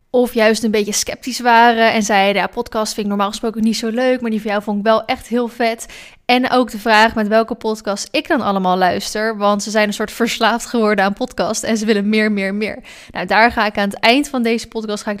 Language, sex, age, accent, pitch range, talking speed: Dutch, female, 10-29, Dutch, 205-240 Hz, 255 wpm